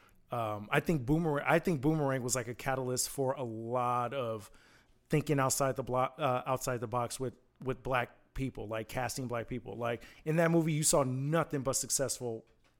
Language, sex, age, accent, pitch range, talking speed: English, male, 30-49, American, 130-160 Hz, 190 wpm